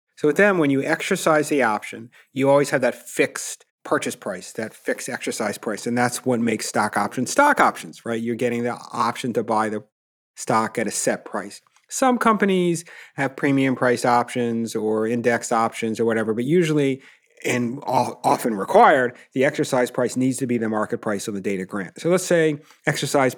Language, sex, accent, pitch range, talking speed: English, male, American, 115-145 Hz, 185 wpm